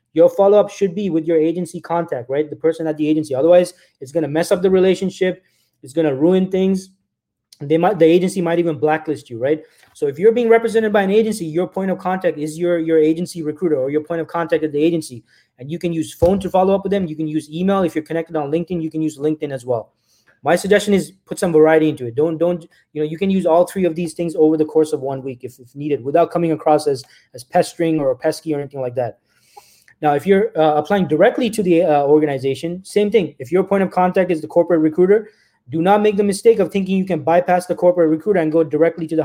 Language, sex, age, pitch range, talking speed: English, male, 20-39, 155-185 Hz, 250 wpm